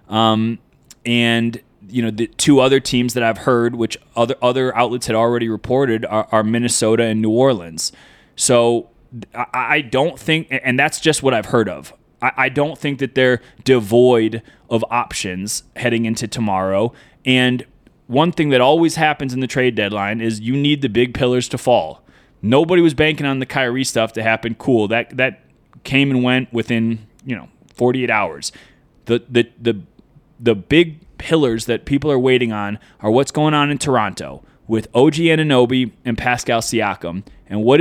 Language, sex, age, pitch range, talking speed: English, male, 20-39, 115-140 Hz, 180 wpm